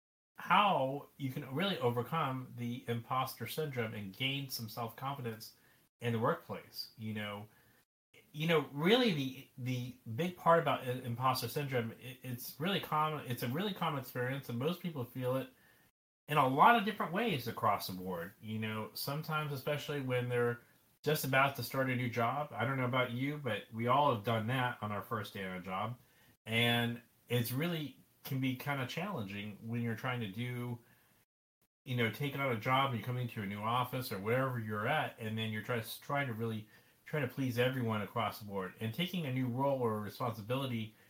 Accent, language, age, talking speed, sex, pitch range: American, English, 30-49, 195 wpm, male, 115-140 Hz